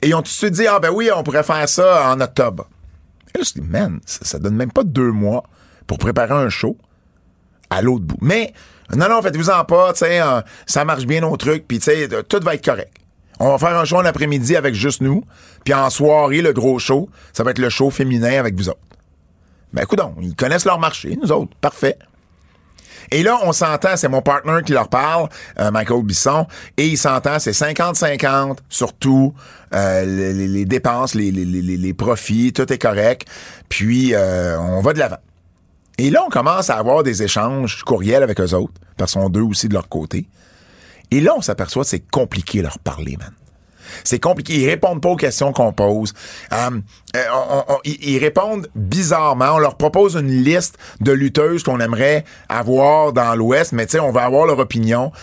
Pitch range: 100-150 Hz